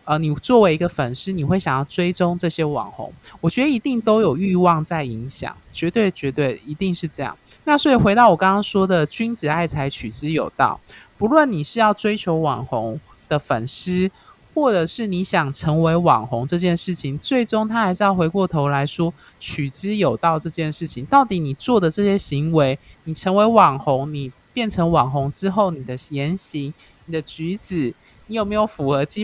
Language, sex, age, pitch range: Chinese, male, 20-39, 140-195 Hz